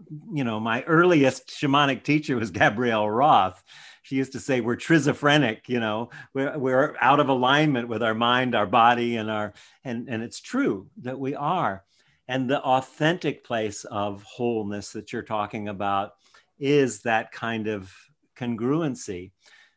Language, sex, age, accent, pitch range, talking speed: English, male, 50-69, American, 115-150 Hz, 155 wpm